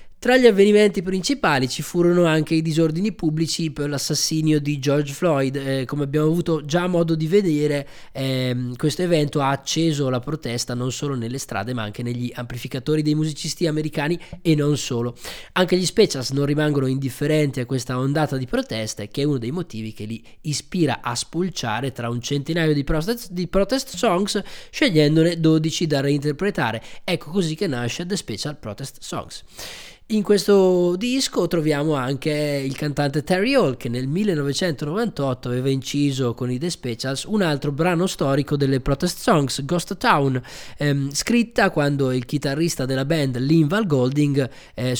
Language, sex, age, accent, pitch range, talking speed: Italian, male, 20-39, native, 135-170 Hz, 160 wpm